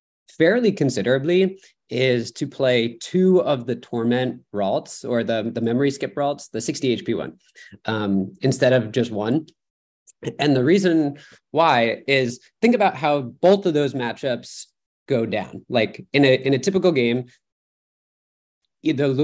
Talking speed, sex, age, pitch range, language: 145 wpm, male, 20-39, 120-160 Hz, English